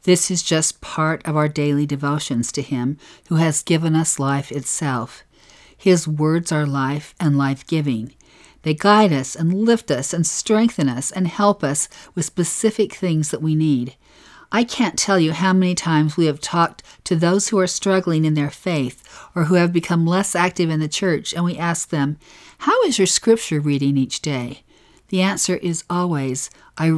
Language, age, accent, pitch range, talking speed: English, 50-69, American, 145-180 Hz, 185 wpm